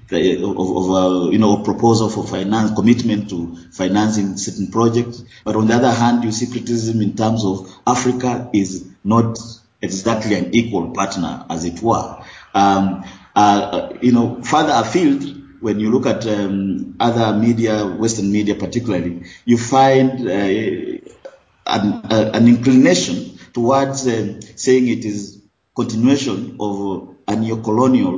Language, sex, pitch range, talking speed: English, male, 100-120 Hz, 140 wpm